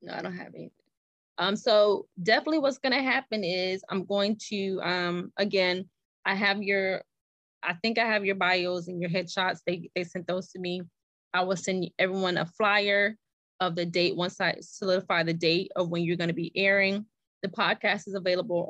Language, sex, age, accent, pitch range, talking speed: English, female, 20-39, American, 175-205 Hz, 195 wpm